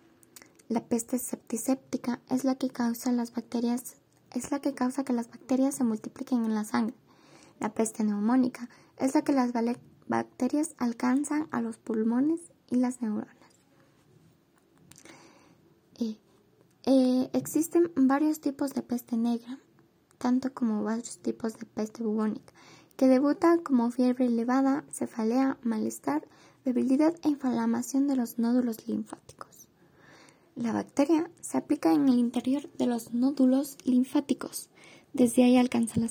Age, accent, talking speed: 10-29, Mexican, 135 wpm